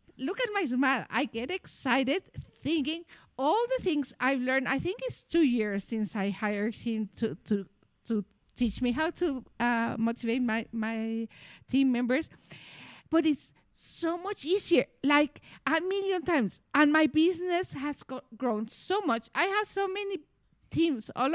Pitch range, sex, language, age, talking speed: 225-310 Hz, female, English, 50-69, 165 wpm